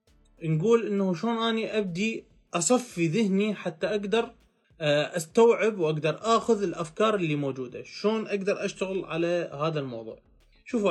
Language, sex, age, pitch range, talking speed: Arabic, male, 20-39, 160-210 Hz, 120 wpm